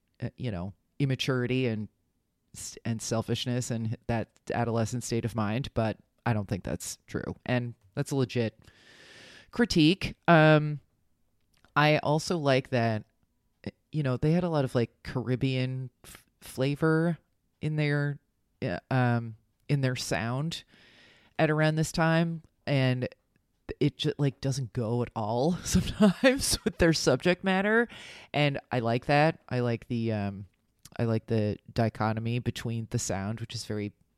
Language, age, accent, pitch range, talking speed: English, 30-49, American, 110-145 Hz, 140 wpm